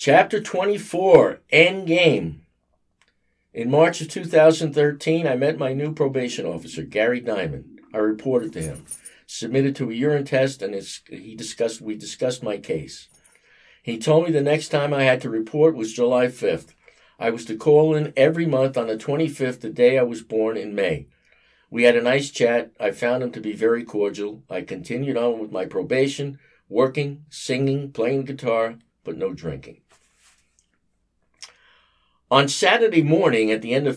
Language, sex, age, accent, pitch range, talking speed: English, male, 50-69, American, 110-145 Hz, 165 wpm